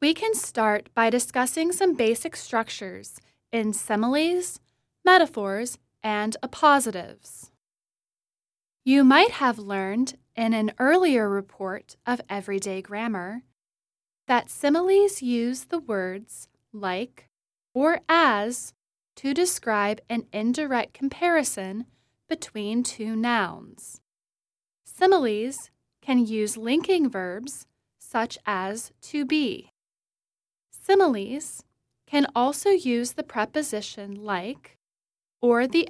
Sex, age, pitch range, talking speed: female, 10-29, 215-295 Hz, 95 wpm